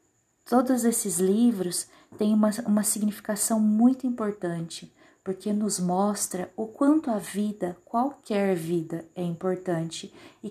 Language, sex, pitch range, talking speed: Portuguese, female, 185-230 Hz, 120 wpm